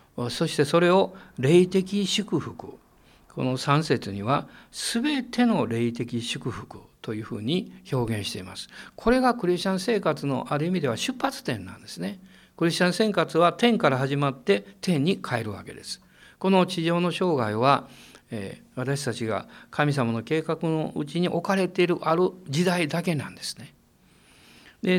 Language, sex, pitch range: Japanese, male, 130-190 Hz